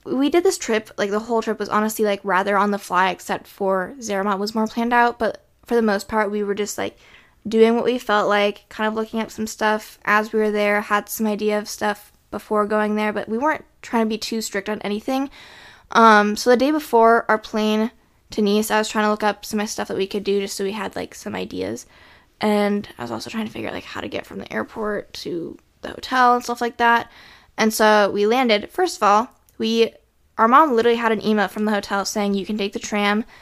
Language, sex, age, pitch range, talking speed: English, female, 10-29, 205-225 Hz, 250 wpm